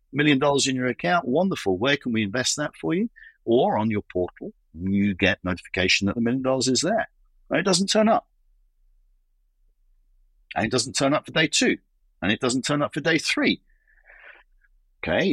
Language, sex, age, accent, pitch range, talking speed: English, male, 40-59, British, 95-135 Hz, 185 wpm